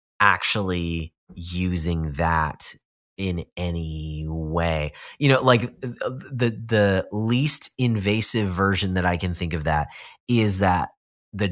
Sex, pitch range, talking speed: male, 85-105 Hz, 120 wpm